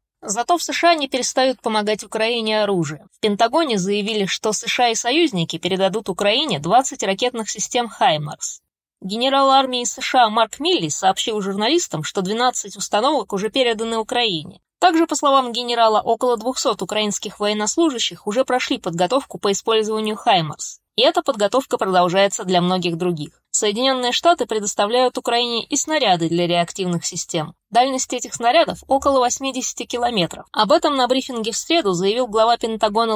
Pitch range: 200-260 Hz